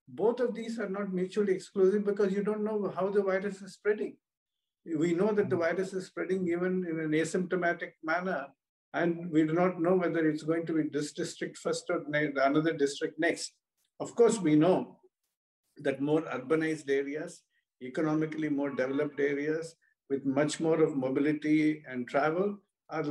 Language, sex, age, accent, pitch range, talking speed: English, male, 50-69, Indian, 145-190 Hz, 170 wpm